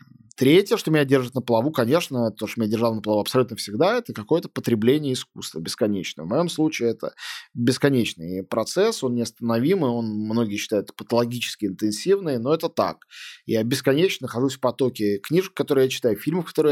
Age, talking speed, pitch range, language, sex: 20-39, 170 wpm, 110-135 Hz, Russian, male